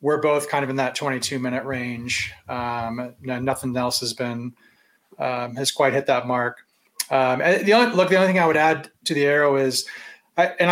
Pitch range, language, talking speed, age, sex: 135-180 Hz, English, 200 wpm, 30-49, male